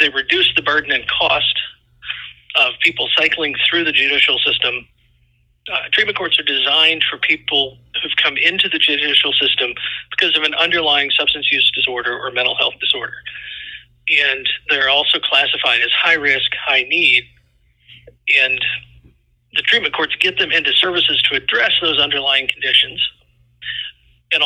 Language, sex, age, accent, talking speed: English, male, 40-59, American, 145 wpm